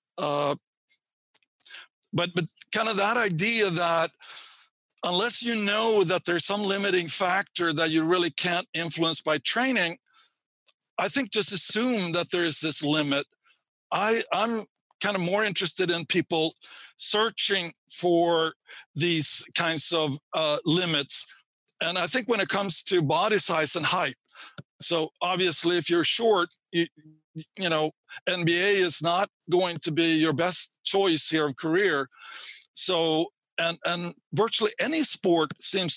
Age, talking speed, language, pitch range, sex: 60-79, 140 wpm, English, 160-195 Hz, male